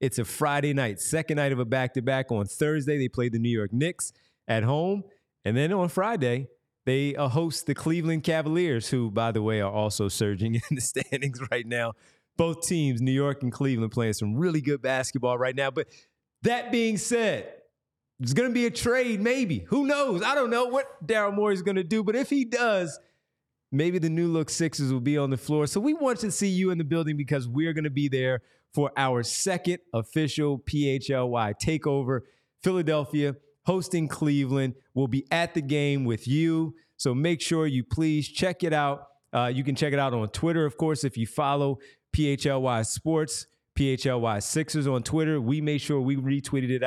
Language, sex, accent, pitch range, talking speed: English, male, American, 125-160 Hz, 195 wpm